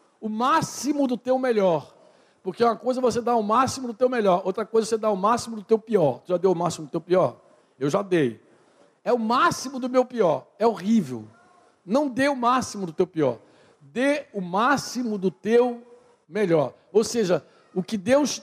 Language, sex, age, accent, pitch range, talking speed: Portuguese, male, 60-79, Brazilian, 185-245 Hz, 200 wpm